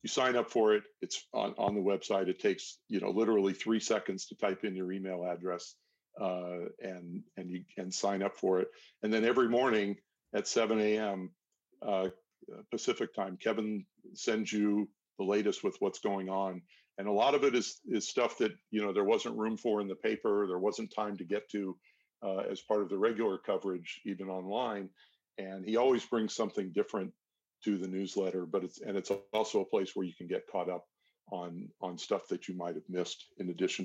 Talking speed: 205 wpm